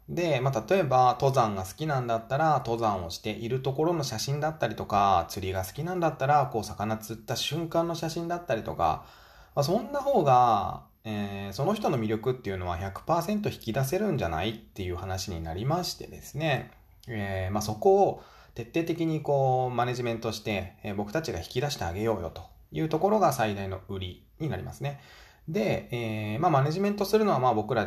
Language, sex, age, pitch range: Japanese, male, 20-39, 95-145 Hz